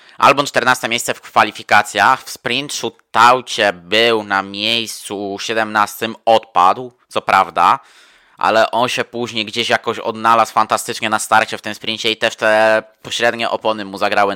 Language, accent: Polish, native